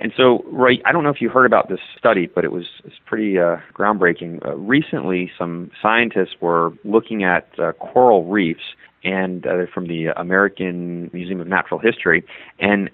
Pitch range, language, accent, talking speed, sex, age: 90-115 Hz, English, American, 190 wpm, male, 30-49